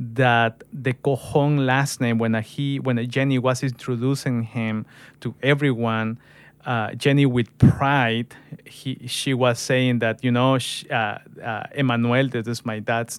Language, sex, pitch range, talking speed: English, male, 120-140 Hz, 150 wpm